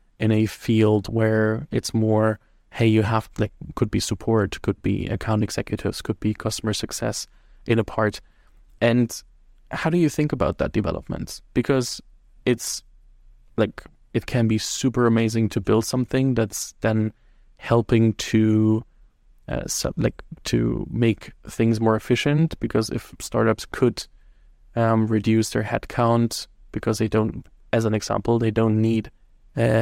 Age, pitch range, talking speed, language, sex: 20-39, 110-120 Hz, 145 wpm, German, male